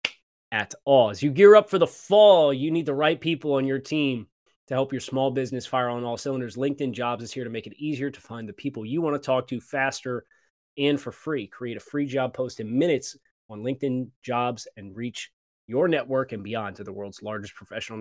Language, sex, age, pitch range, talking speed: English, male, 20-39, 115-140 Hz, 225 wpm